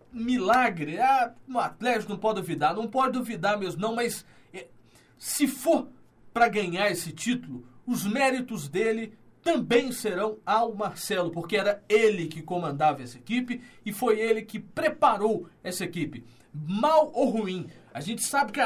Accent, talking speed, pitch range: Brazilian, 150 wpm, 185-255 Hz